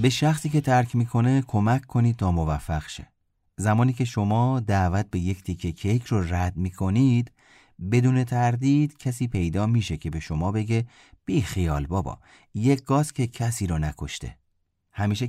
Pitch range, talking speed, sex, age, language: 90-125 Hz, 155 wpm, male, 30-49, Persian